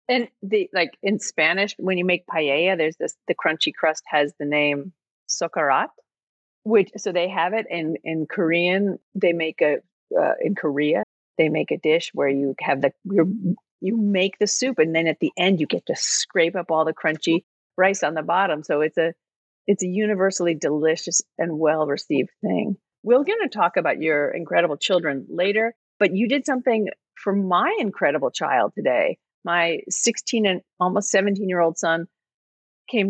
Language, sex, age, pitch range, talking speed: English, female, 40-59, 165-220 Hz, 180 wpm